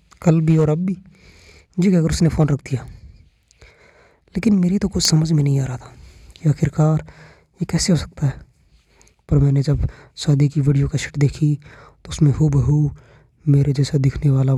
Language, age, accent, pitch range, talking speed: Hindi, 20-39, native, 130-150 Hz, 185 wpm